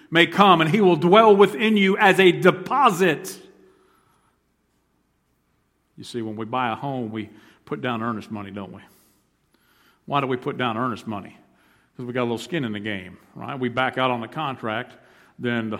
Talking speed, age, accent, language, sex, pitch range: 190 wpm, 50-69, American, English, male, 110-145 Hz